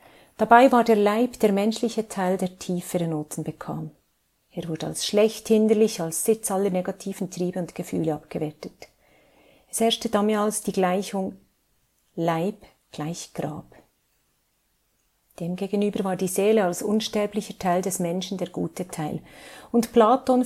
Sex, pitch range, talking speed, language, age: female, 170-210 Hz, 130 wpm, German, 40-59